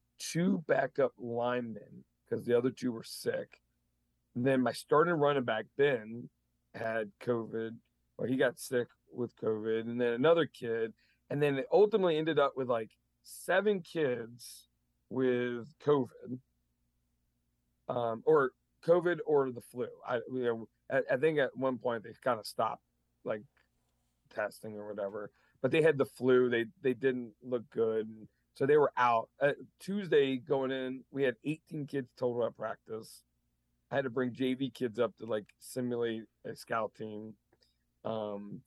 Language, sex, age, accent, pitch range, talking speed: English, male, 40-59, American, 110-130 Hz, 160 wpm